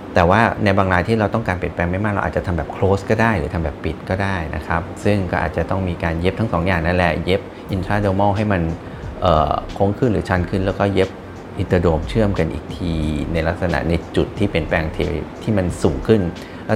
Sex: male